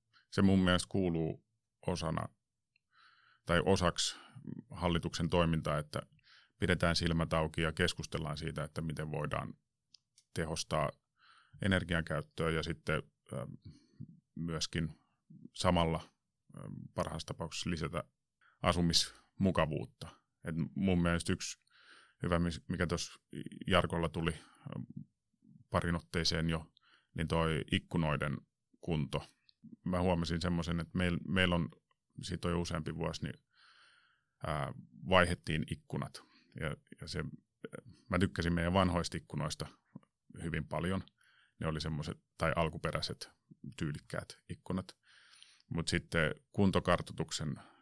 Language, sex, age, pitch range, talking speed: Finnish, male, 30-49, 80-90 Hz, 95 wpm